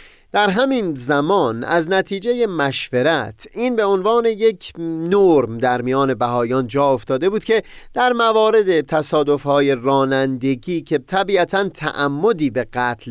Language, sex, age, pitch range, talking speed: Persian, male, 30-49, 130-195 Hz, 125 wpm